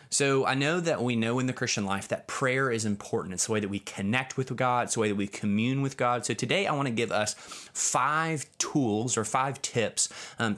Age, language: 20-39, English